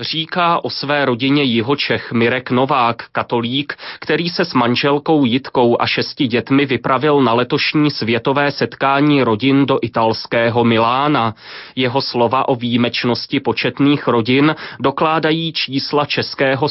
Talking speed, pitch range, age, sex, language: 120 wpm, 120-150 Hz, 30-49, male, Slovak